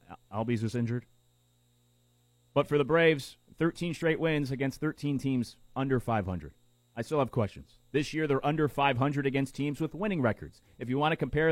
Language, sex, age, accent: English, male, 30-49, American